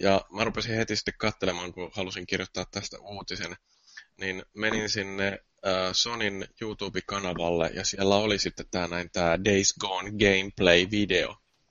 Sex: male